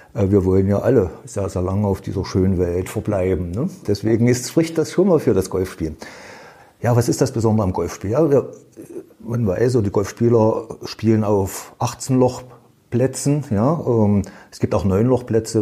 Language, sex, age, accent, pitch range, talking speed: German, male, 50-69, German, 100-130 Hz, 165 wpm